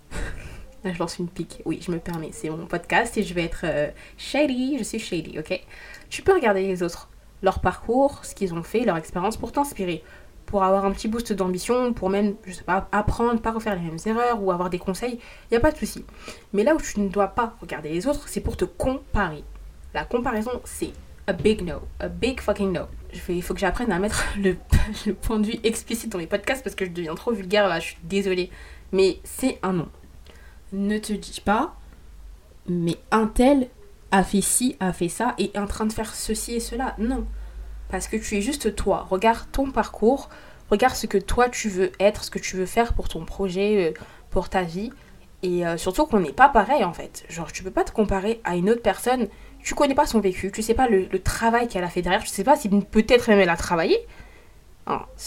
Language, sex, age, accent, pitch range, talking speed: French, female, 20-39, French, 185-230 Hz, 230 wpm